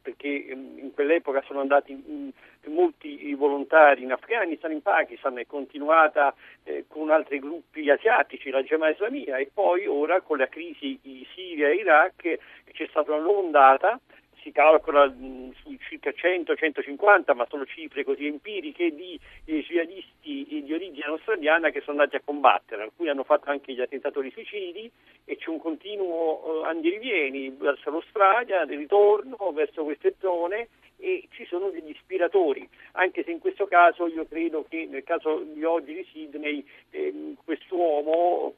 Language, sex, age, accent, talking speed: Italian, male, 50-69, native, 150 wpm